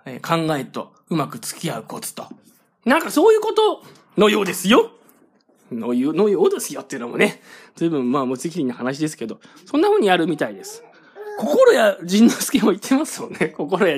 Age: 20-39